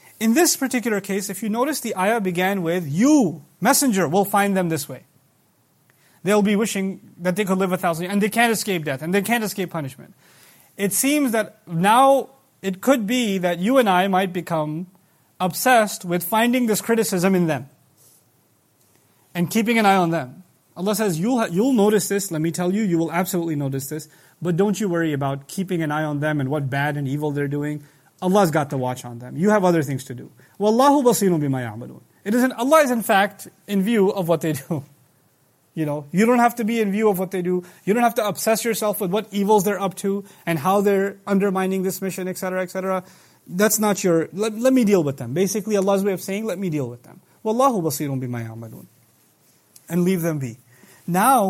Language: English